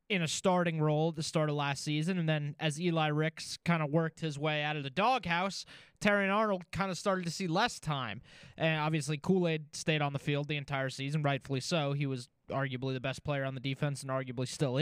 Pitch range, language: 150-195 Hz, English